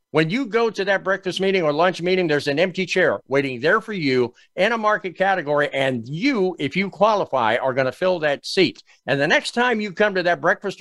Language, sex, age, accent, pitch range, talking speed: English, male, 50-69, American, 140-185 Hz, 235 wpm